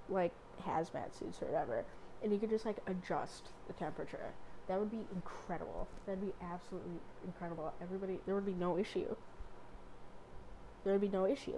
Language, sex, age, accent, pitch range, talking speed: English, female, 20-39, American, 165-200 Hz, 165 wpm